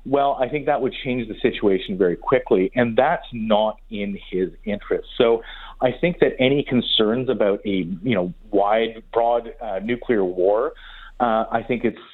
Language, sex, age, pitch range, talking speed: English, male, 30-49, 105-140 Hz, 175 wpm